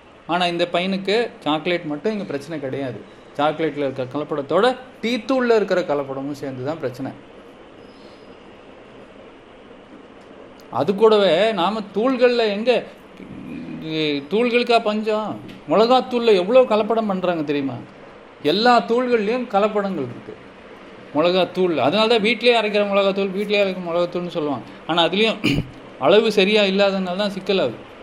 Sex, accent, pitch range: male, native, 175-235 Hz